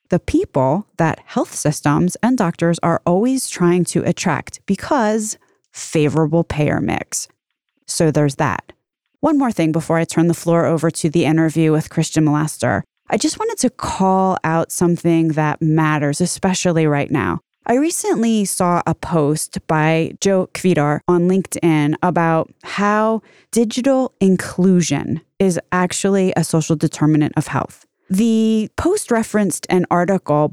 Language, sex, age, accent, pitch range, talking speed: English, female, 20-39, American, 155-195 Hz, 140 wpm